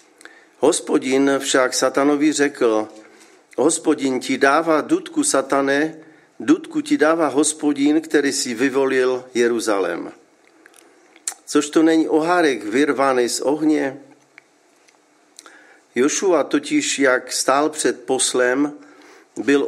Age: 50-69